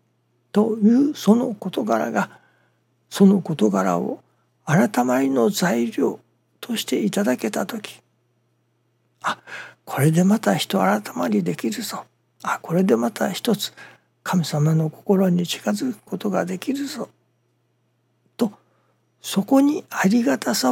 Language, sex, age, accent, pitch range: Japanese, male, 60-79, native, 120-200 Hz